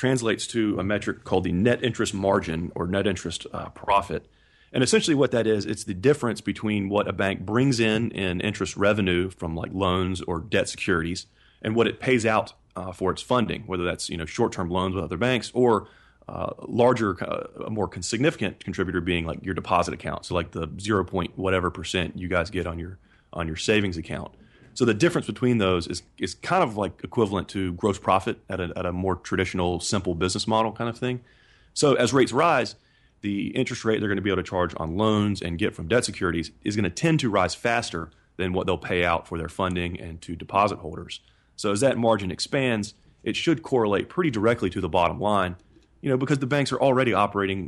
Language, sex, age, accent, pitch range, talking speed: English, male, 30-49, American, 90-110 Hz, 215 wpm